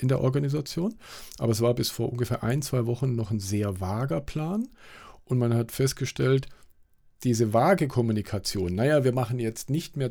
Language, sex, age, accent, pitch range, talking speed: German, male, 50-69, German, 110-140 Hz, 180 wpm